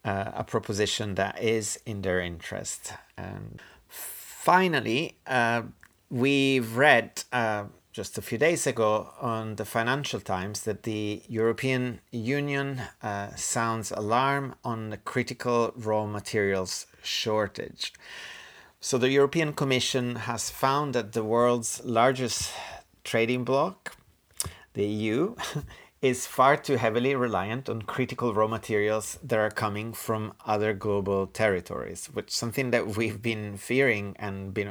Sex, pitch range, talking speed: male, 100-125 Hz, 130 wpm